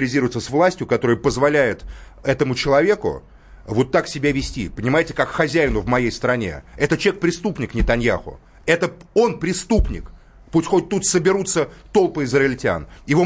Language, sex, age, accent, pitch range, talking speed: Russian, male, 30-49, native, 135-180 Hz, 140 wpm